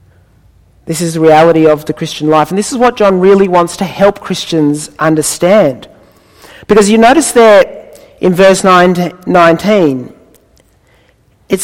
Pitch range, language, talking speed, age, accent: 160-220 Hz, English, 150 wpm, 40-59, Australian